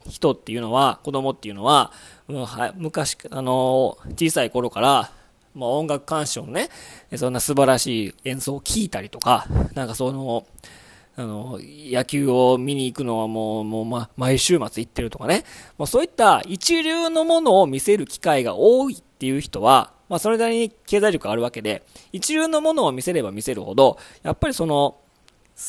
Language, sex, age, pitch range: Japanese, male, 20-39, 120-175 Hz